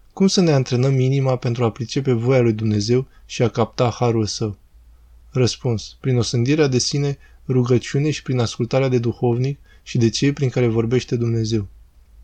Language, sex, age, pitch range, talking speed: Romanian, male, 20-39, 110-135 Hz, 165 wpm